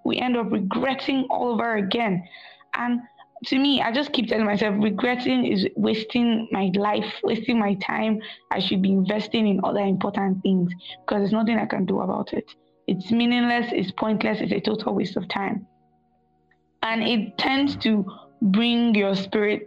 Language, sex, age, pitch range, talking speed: English, female, 20-39, 195-230 Hz, 170 wpm